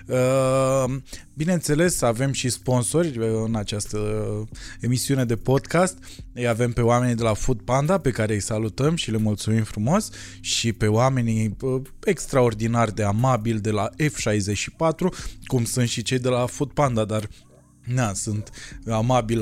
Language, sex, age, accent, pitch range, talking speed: Romanian, male, 20-39, native, 110-145 Hz, 140 wpm